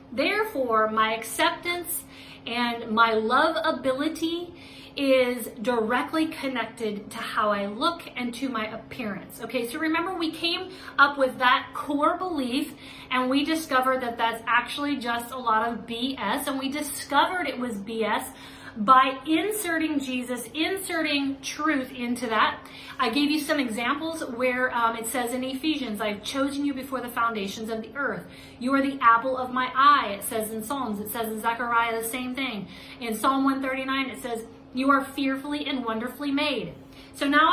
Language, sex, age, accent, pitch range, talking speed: English, female, 30-49, American, 230-285 Hz, 165 wpm